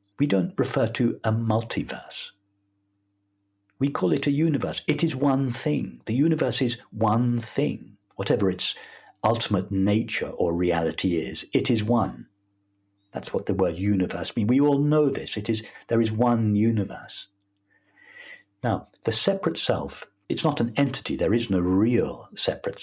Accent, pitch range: British, 100-120 Hz